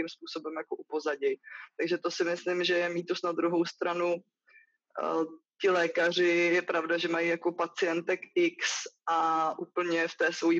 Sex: female